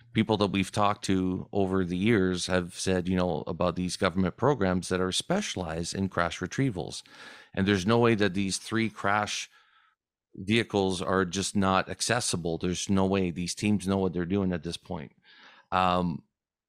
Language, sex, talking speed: English, male, 175 wpm